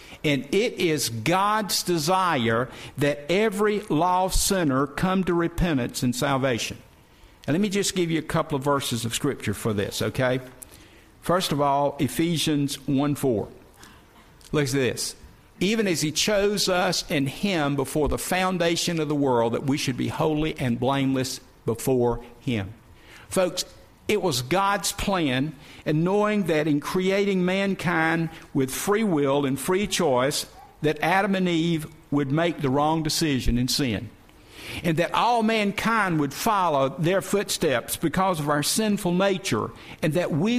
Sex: male